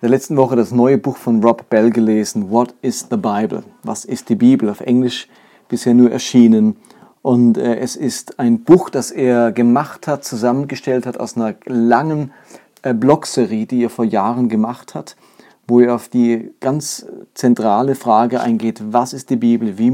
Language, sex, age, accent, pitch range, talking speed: German, male, 40-59, German, 115-130 Hz, 170 wpm